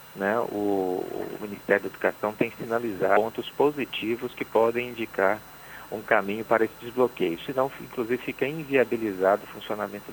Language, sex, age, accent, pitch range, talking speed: Portuguese, male, 50-69, Brazilian, 100-120 Hz, 150 wpm